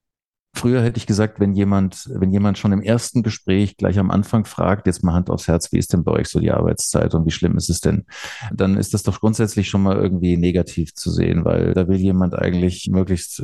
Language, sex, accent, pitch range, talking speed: German, male, German, 85-100 Hz, 230 wpm